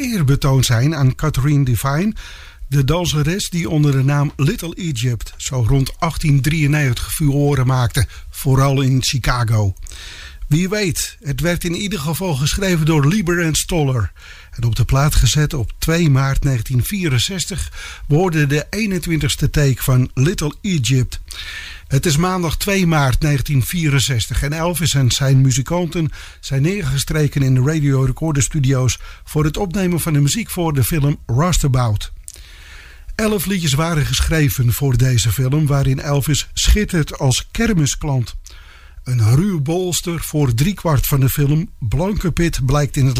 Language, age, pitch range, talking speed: English, 50-69, 130-170 Hz, 145 wpm